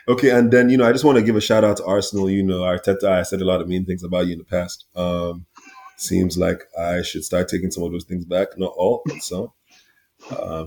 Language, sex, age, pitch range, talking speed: English, male, 20-39, 80-95 Hz, 265 wpm